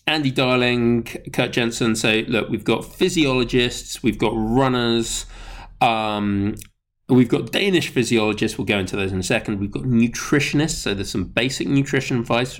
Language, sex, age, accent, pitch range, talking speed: English, male, 20-39, British, 105-135 Hz, 155 wpm